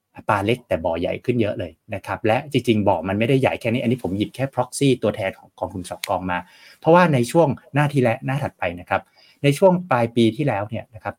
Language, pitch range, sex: Thai, 95-135 Hz, male